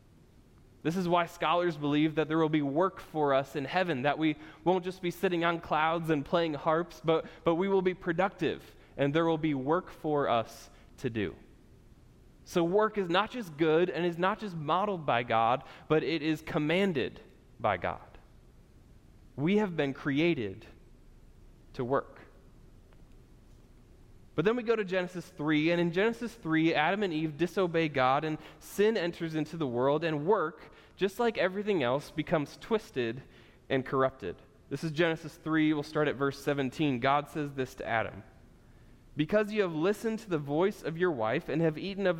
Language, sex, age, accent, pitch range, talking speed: English, male, 20-39, American, 140-180 Hz, 180 wpm